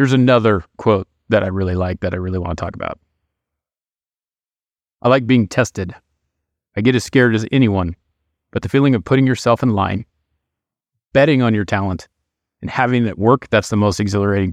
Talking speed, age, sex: 180 wpm, 30-49, male